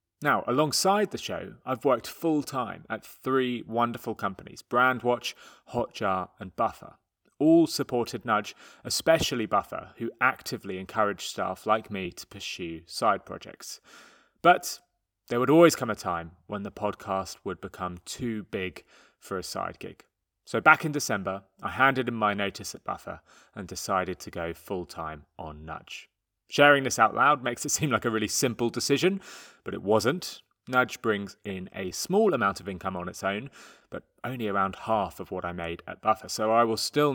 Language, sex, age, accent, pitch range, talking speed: English, male, 30-49, British, 95-135 Hz, 175 wpm